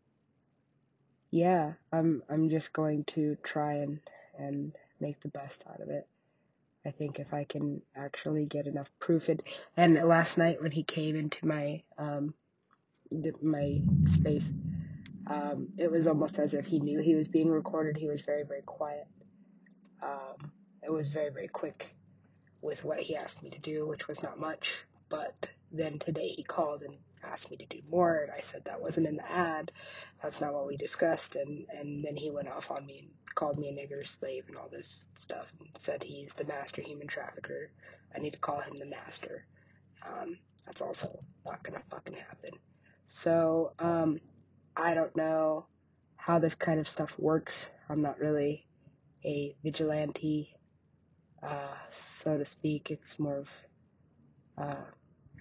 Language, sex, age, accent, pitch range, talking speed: English, female, 20-39, American, 145-165 Hz, 170 wpm